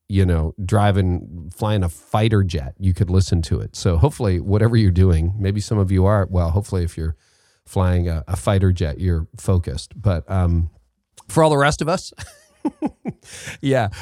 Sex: male